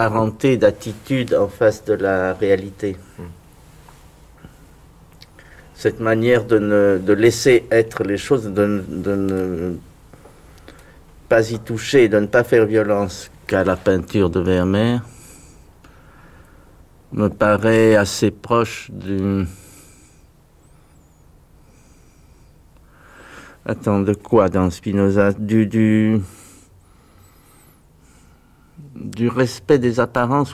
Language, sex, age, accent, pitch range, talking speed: French, male, 50-69, French, 90-110 Hz, 90 wpm